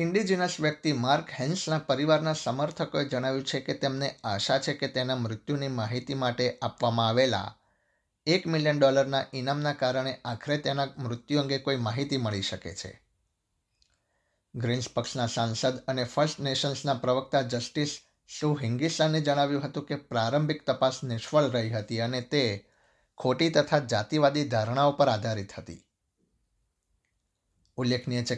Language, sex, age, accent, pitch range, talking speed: Gujarati, male, 60-79, native, 115-140 Hz, 130 wpm